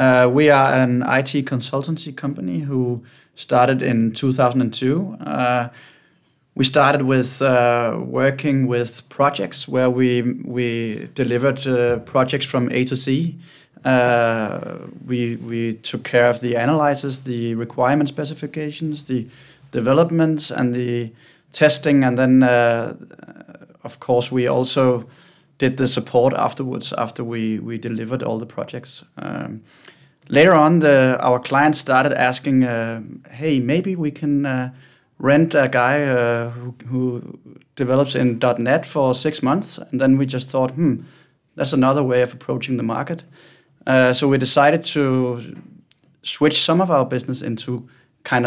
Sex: male